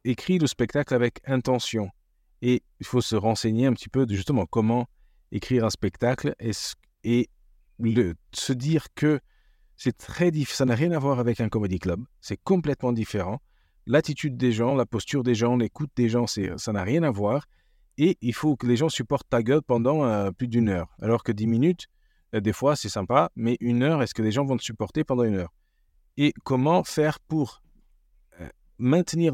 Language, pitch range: French, 105-135 Hz